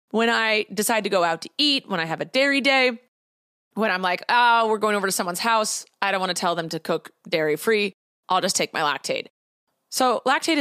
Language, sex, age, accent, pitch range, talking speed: English, female, 30-49, American, 185-260 Hz, 225 wpm